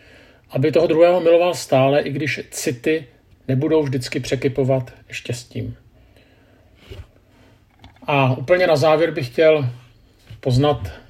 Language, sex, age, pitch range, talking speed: Czech, male, 50-69, 115-135 Hz, 105 wpm